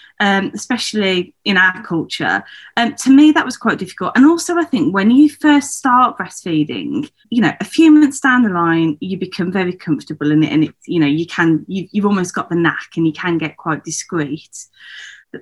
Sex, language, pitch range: female, English, 170-240 Hz